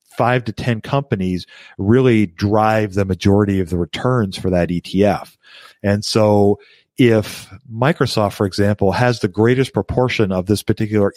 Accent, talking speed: American, 145 wpm